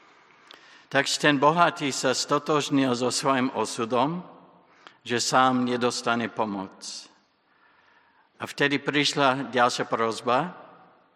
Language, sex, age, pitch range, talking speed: Slovak, male, 60-79, 120-150 Hz, 95 wpm